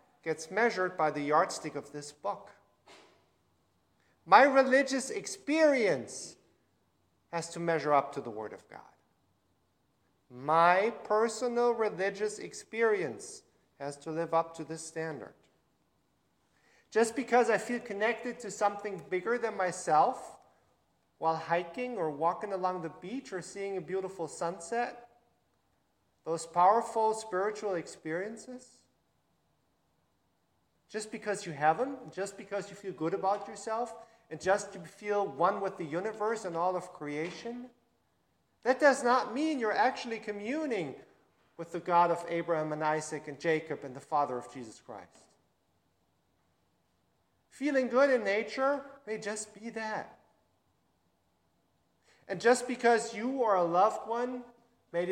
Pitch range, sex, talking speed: 165-235 Hz, male, 130 wpm